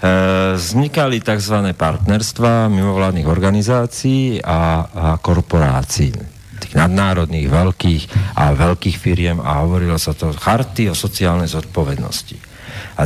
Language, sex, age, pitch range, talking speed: Slovak, male, 50-69, 85-115 Hz, 110 wpm